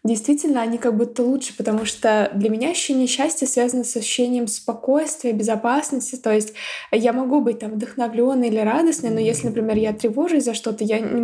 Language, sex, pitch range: Russian, female, 210-240 Hz